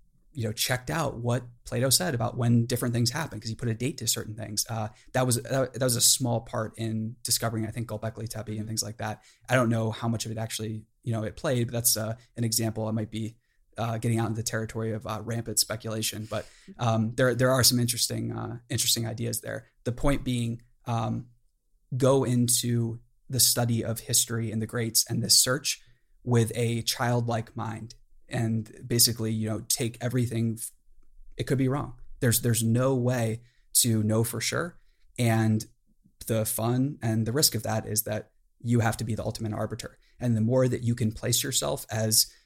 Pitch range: 110-120 Hz